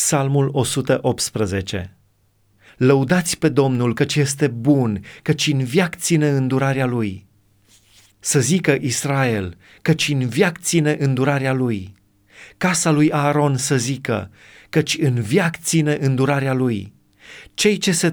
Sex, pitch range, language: male, 105-145 Hz, Romanian